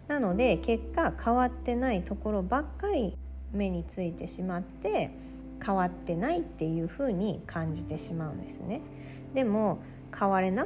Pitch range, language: 160-235 Hz, Japanese